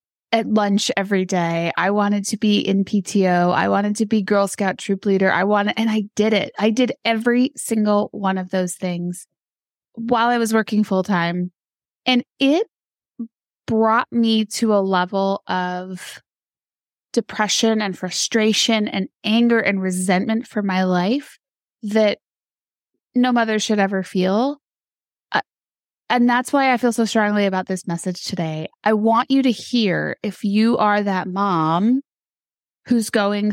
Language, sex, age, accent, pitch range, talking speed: English, female, 20-39, American, 185-225 Hz, 150 wpm